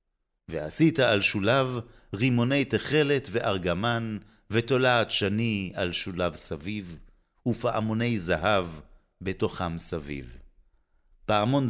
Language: Hebrew